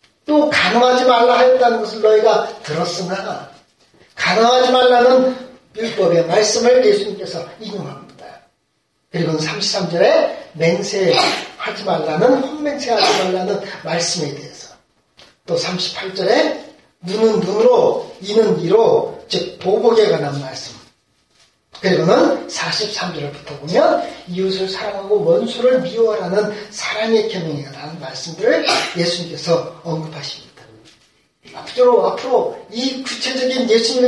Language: Korean